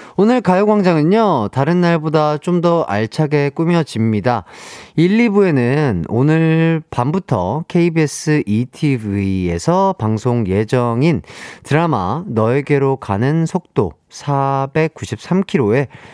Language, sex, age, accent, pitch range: Korean, male, 40-59, native, 110-170 Hz